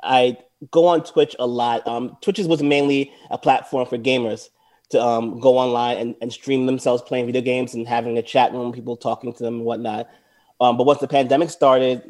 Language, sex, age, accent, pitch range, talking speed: English, male, 30-49, American, 120-135 Hz, 210 wpm